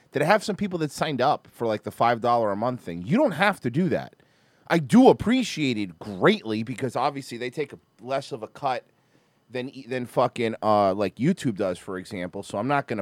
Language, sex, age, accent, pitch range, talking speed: English, male, 30-49, American, 105-150 Hz, 220 wpm